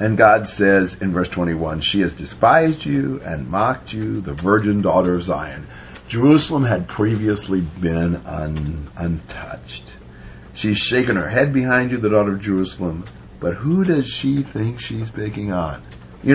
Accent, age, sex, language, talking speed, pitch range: American, 50-69, male, English, 155 wpm, 90-130 Hz